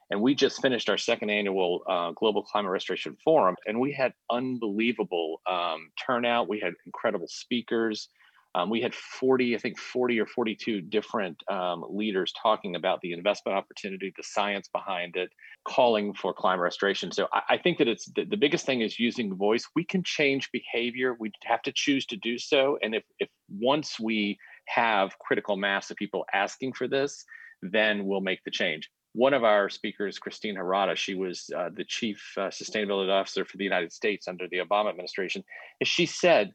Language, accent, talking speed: English, American, 185 wpm